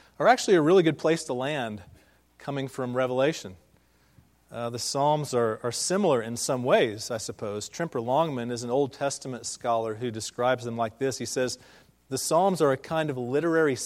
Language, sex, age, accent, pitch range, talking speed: English, male, 40-59, American, 120-155 Hz, 185 wpm